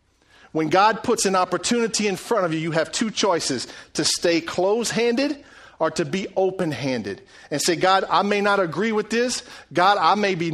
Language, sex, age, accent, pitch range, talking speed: English, male, 40-59, American, 160-230 Hz, 200 wpm